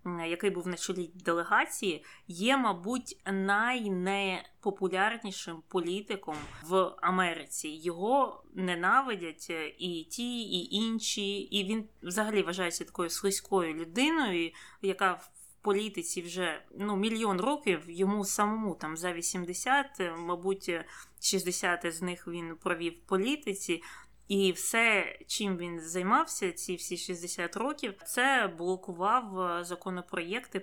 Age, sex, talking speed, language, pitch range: 20-39, female, 110 wpm, Ukrainian, 170-205 Hz